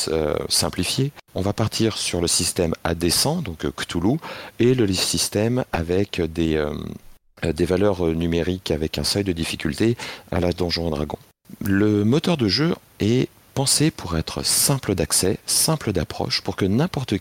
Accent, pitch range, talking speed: French, 85-115 Hz, 150 wpm